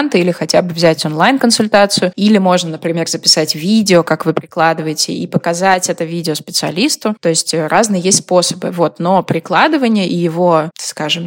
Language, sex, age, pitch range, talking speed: Russian, female, 20-39, 160-205 Hz, 155 wpm